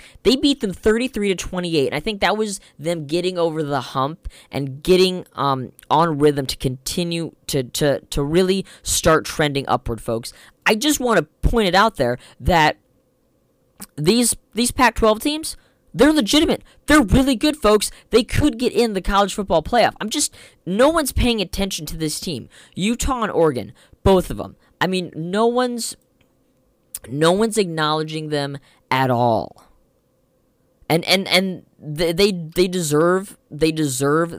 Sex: female